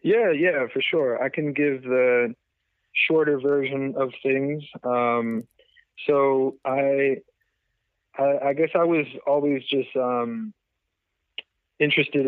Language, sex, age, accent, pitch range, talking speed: English, male, 20-39, American, 110-140 Hz, 115 wpm